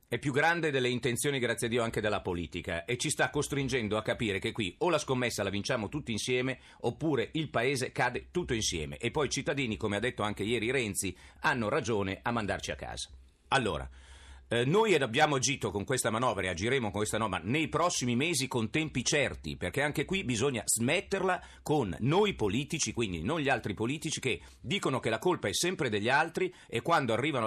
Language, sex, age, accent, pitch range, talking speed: Italian, male, 40-59, native, 105-150 Hz, 205 wpm